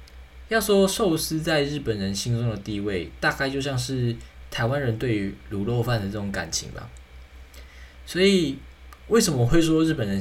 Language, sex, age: Chinese, male, 20-39